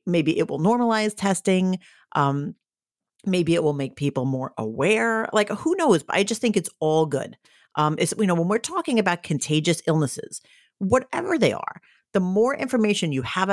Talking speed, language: 180 wpm, English